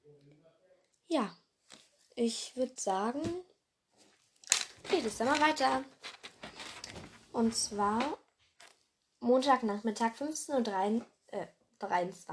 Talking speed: 65 wpm